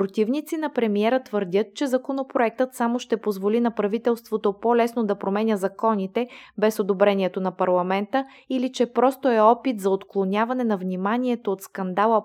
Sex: female